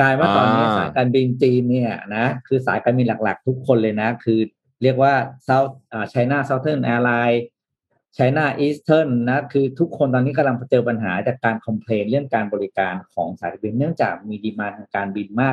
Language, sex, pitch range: Thai, male, 115-140 Hz